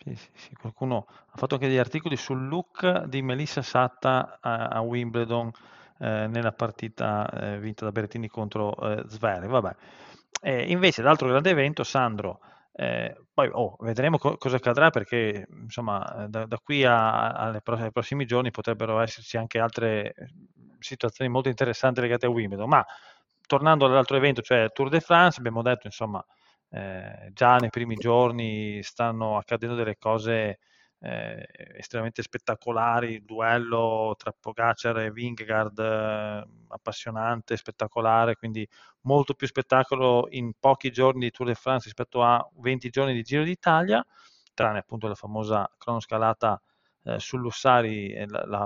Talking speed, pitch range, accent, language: 150 wpm, 110-130 Hz, native, Italian